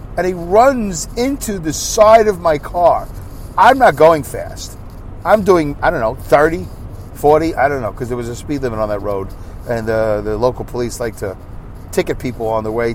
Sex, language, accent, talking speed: male, English, American, 205 wpm